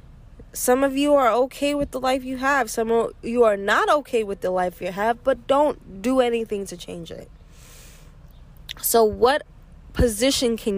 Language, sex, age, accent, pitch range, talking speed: English, female, 10-29, American, 185-250 Hz, 180 wpm